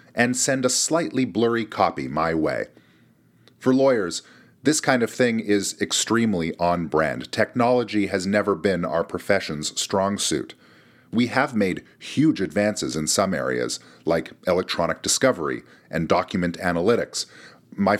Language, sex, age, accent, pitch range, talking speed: English, male, 40-59, American, 90-115 Hz, 135 wpm